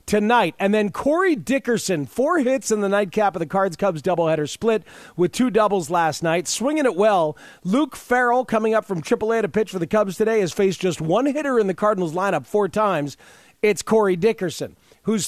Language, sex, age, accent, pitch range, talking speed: English, male, 40-59, American, 165-220 Hz, 195 wpm